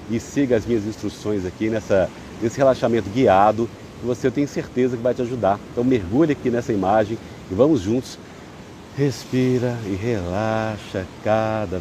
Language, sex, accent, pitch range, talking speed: Portuguese, male, Brazilian, 90-115 Hz, 145 wpm